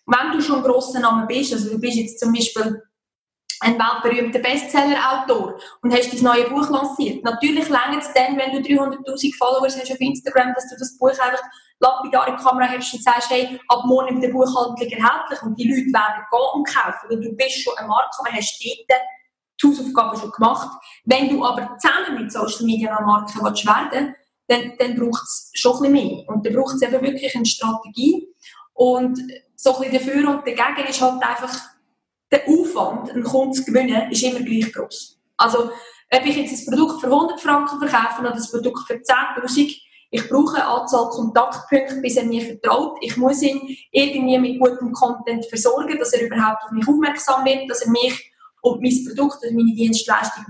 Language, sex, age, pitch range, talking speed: German, female, 20-39, 235-270 Hz, 190 wpm